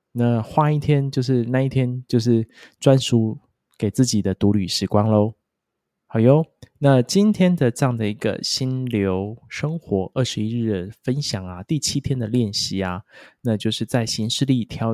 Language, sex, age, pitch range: Chinese, male, 20-39, 105-135 Hz